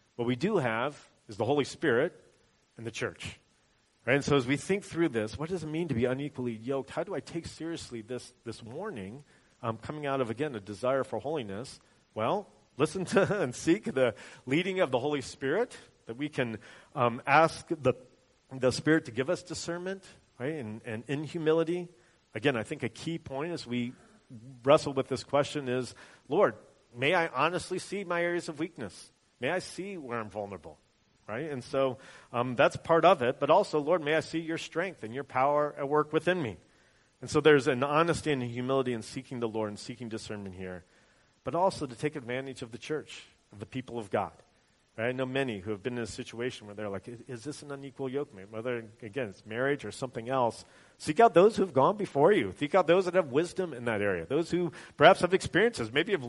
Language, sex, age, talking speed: English, male, 40-59, 210 wpm